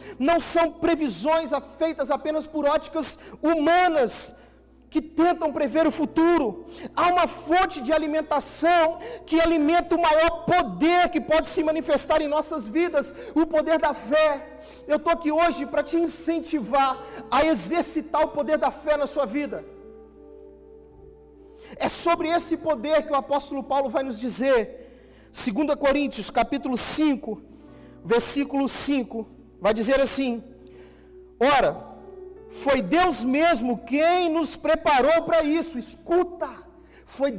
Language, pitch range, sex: Gujarati, 280-335 Hz, male